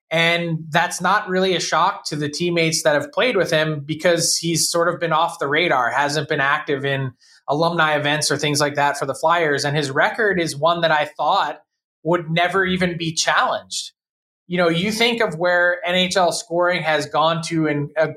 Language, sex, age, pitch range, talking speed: English, male, 20-39, 155-180 Hz, 200 wpm